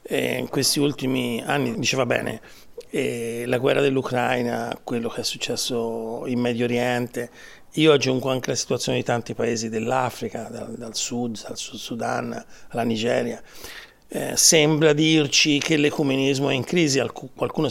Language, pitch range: Italian, 125-160 Hz